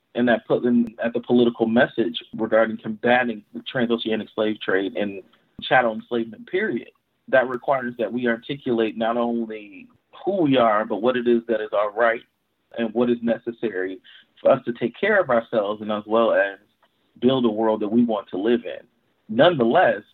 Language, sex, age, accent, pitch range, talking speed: English, male, 40-59, American, 110-125 Hz, 180 wpm